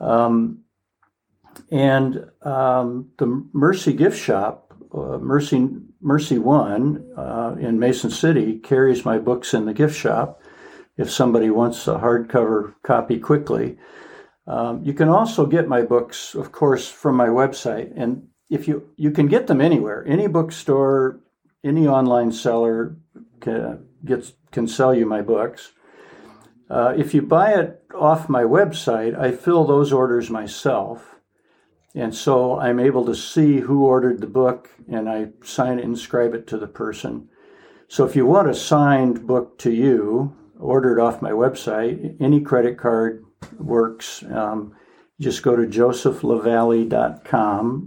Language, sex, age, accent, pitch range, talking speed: English, male, 60-79, American, 115-145 Hz, 145 wpm